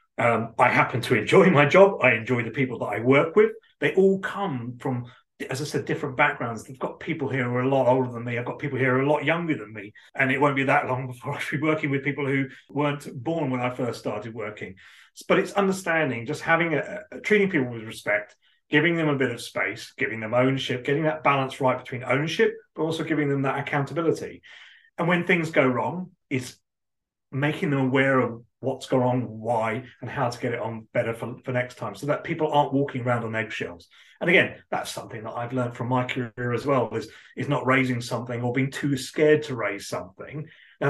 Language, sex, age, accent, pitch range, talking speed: English, male, 30-49, British, 125-150 Hz, 230 wpm